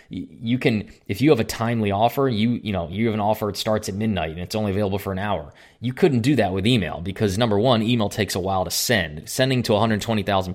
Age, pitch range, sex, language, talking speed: 20-39, 95-115 Hz, male, English, 250 wpm